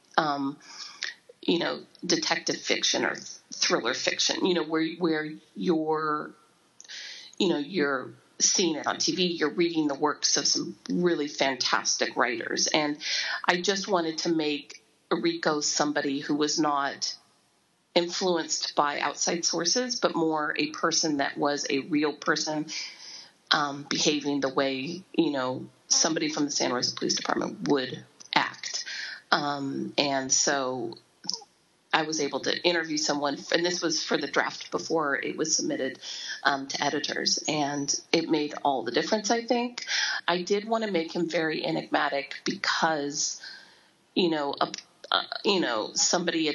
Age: 40-59